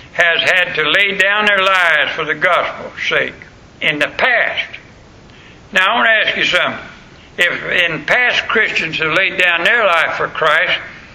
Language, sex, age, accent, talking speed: English, male, 60-79, American, 170 wpm